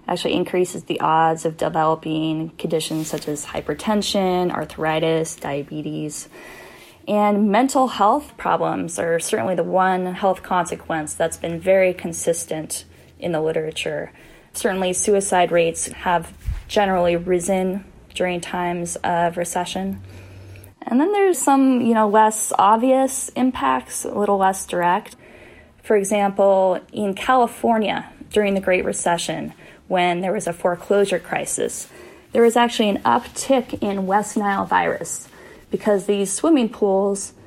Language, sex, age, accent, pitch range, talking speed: English, female, 10-29, American, 170-215 Hz, 125 wpm